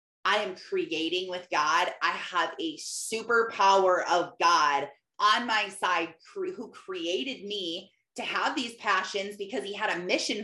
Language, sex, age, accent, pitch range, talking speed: English, female, 20-39, American, 190-255 Hz, 150 wpm